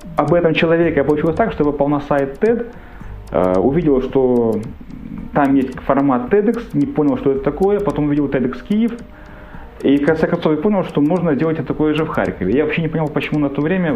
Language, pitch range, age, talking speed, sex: Ukrainian, 120-170 Hz, 30-49, 205 wpm, male